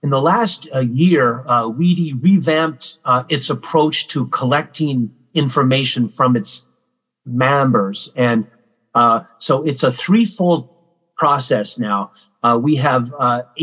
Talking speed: 130 wpm